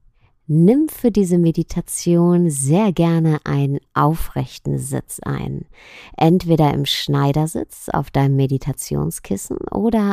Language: German